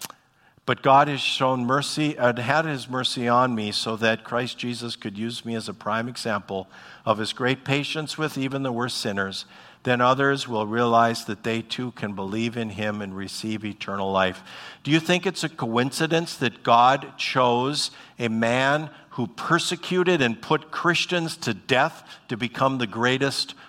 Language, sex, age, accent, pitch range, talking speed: English, male, 50-69, American, 115-145 Hz, 170 wpm